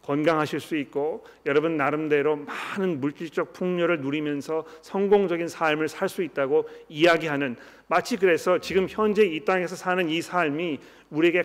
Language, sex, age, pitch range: Korean, male, 40-59, 155-190 Hz